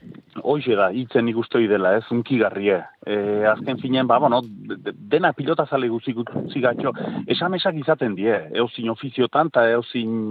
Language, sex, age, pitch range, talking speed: Polish, male, 40-59, 110-130 Hz, 140 wpm